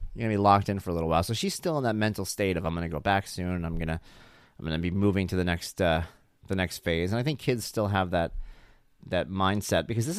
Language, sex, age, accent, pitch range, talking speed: English, male, 30-49, American, 90-130 Hz, 275 wpm